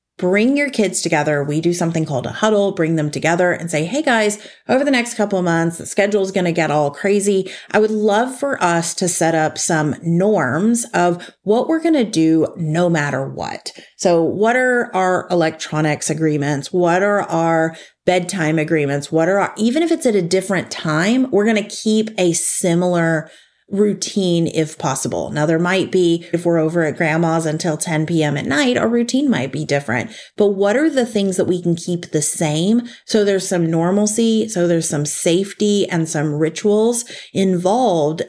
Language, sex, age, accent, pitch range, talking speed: English, female, 30-49, American, 155-205 Hz, 190 wpm